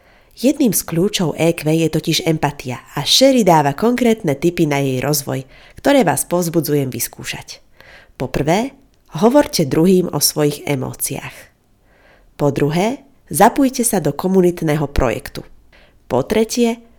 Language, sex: Slovak, female